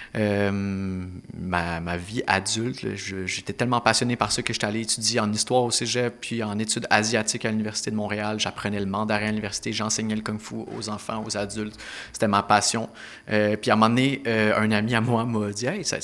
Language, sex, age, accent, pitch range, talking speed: French, male, 30-49, Canadian, 100-115 Hz, 215 wpm